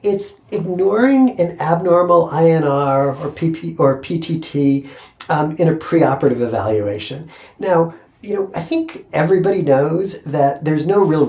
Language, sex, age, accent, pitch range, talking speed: English, male, 50-69, American, 130-165 Hz, 135 wpm